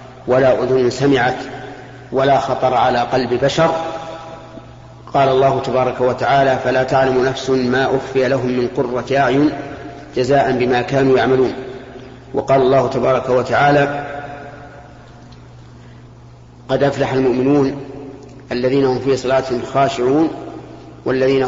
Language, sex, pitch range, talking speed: Arabic, male, 125-135 Hz, 105 wpm